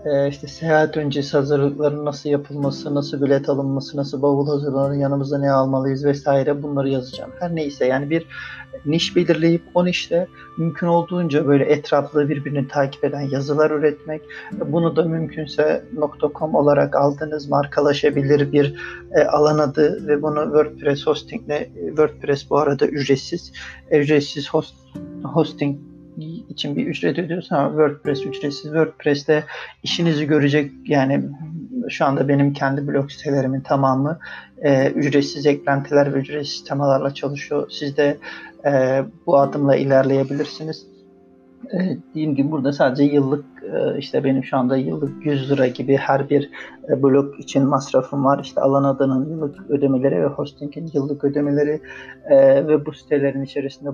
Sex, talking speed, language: male, 135 wpm, Turkish